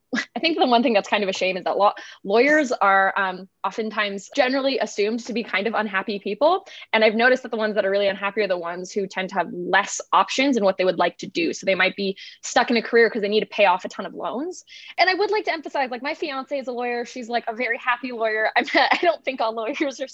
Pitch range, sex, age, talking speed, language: 195-250 Hz, female, 20-39, 275 wpm, English